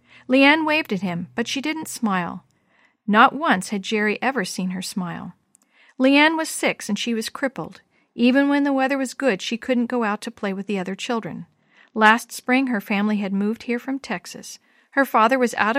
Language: English